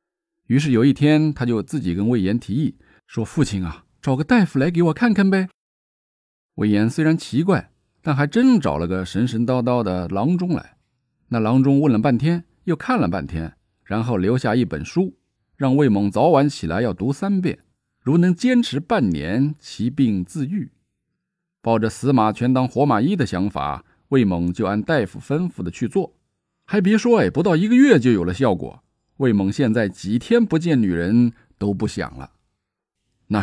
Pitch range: 105-165 Hz